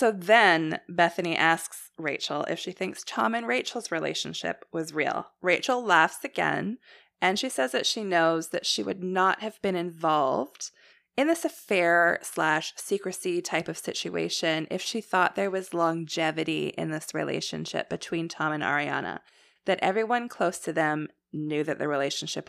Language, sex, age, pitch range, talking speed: English, female, 20-39, 160-230 Hz, 160 wpm